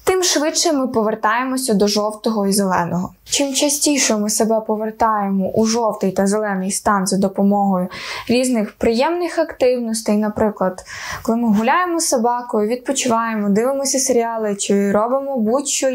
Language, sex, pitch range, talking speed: Ukrainian, female, 210-270 Hz, 130 wpm